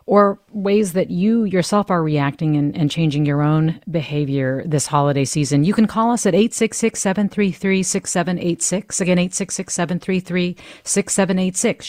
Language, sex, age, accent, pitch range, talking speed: English, female, 40-59, American, 150-195 Hz, 120 wpm